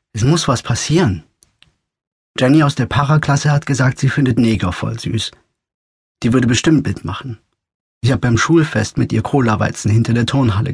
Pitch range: 110-135 Hz